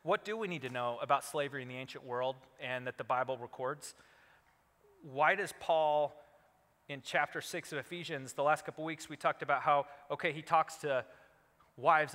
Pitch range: 130-160 Hz